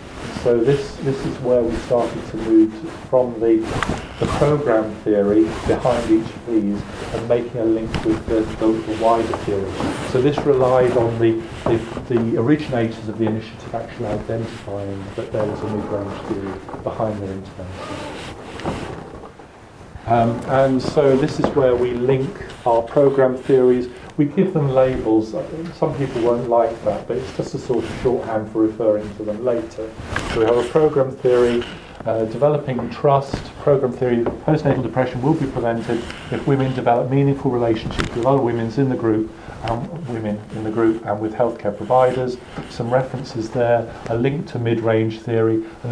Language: English